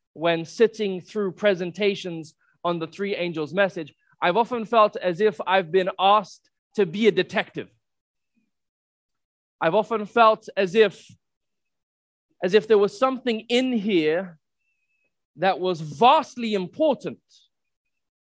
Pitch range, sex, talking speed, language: 145-210 Hz, male, 120 wpm, English